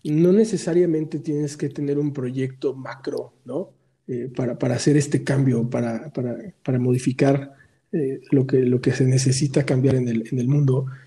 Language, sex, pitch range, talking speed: Spanish, male, 135-165 Hz, 175 wpm